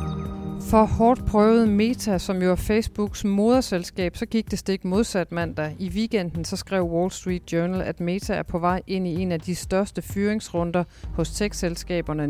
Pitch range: 160-200 Hz